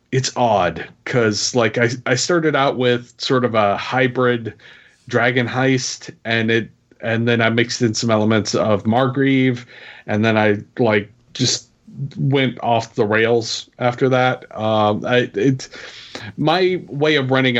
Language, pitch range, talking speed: English, 115-130 Hz, 150 wpm